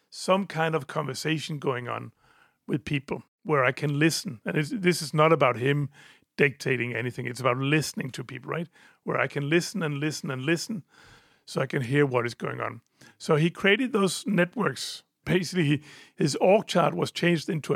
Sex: male